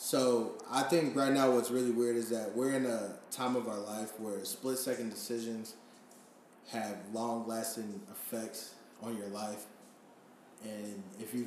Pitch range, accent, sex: 115-140 Hz, American, male